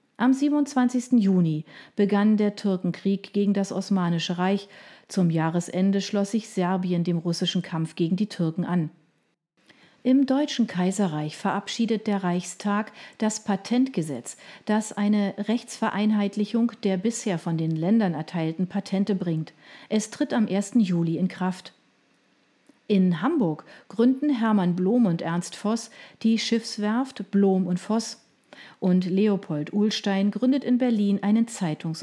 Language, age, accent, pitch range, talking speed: German, 40-59, German, 180-225 Hz, 130 wpm